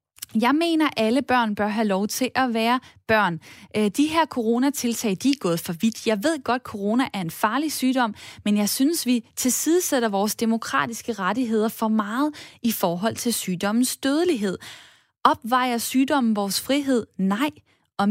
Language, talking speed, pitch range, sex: Danish, 165 wpm, 210-270 Hz, female